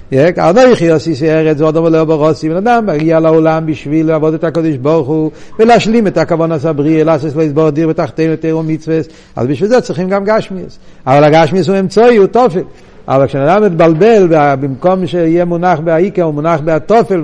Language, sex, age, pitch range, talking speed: Hebrew, male, 60-79, 145-185 Hz, 175 wpm